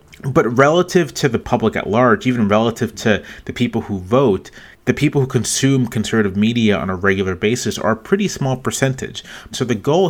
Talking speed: 190 wpm